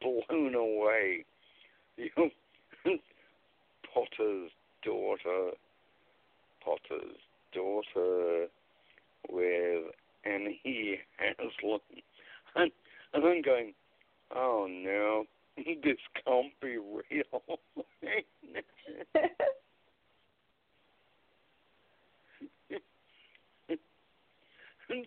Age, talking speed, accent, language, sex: 60-79, 55 wpm, American, English, male